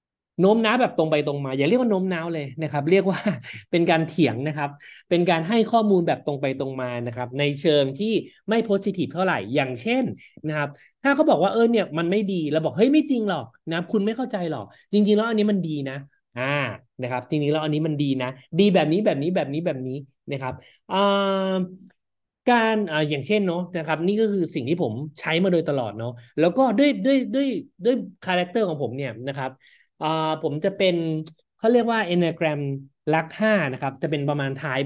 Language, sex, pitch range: Thai, male, 140-200 Hz